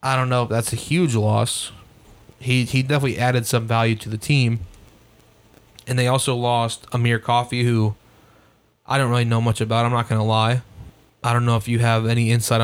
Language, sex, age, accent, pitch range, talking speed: English, male, 20-39, American, 110-125 Hz, 205 wpm